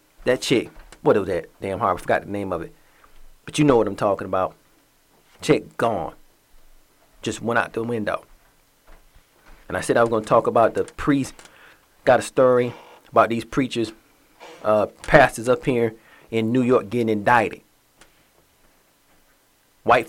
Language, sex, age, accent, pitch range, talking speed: English, male, 30-49, American, 110-130 Hz, 160 wpm